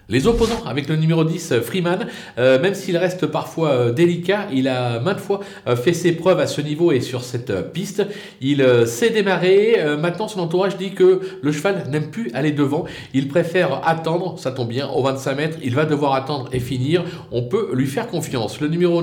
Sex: male